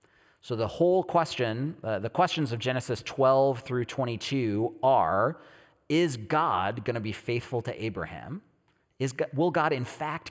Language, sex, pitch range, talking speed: English, male, 115-145 Hz, 145 wpm